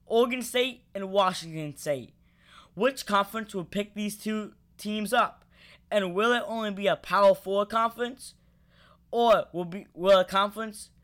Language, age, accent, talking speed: English, 10-29, American, 150 wpm